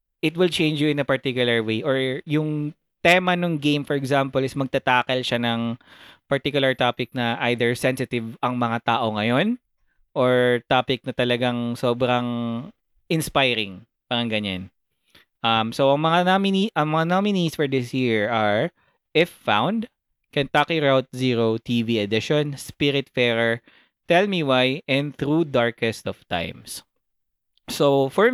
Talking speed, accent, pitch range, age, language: 135 wpm, native, 120-160 Hz, 20-39, Filipino